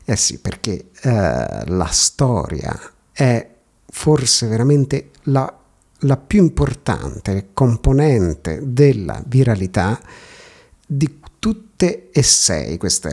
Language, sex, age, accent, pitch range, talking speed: Italian, male, 50-69, native, 105-155 Hz, 95 wpm